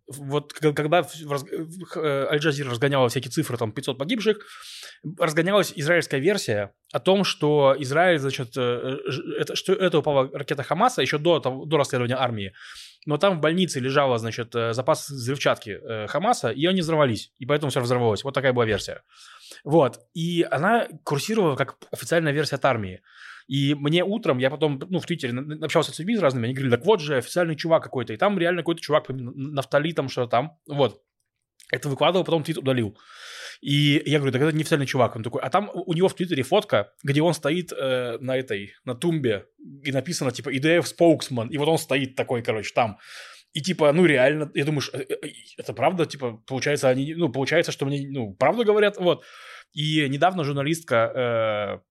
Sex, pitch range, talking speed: male, 130-170 Hz, 175 wpm